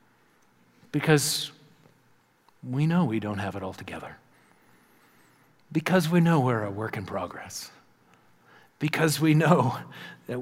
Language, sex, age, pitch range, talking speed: English, male, 50-69, 135-165 Hz, 120 wpm